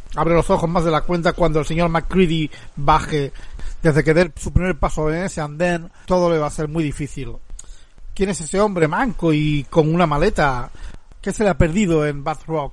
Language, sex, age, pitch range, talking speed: Spanish, male, 40-59, 155-190 Hz, 210 wpm